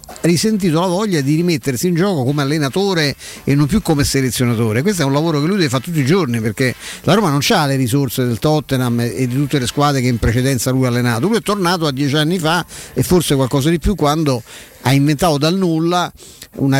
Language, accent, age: Italian, native, 50-69